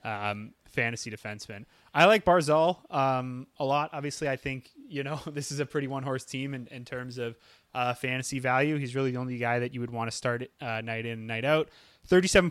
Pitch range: 115-140 Hz